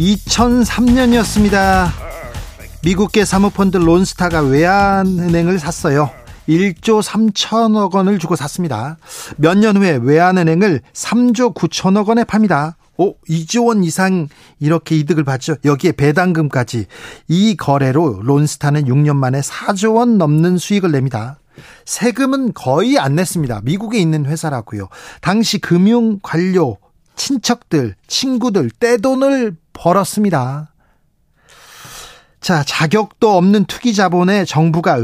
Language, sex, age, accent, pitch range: Korean, male, 40-59, native, 150-200 Hz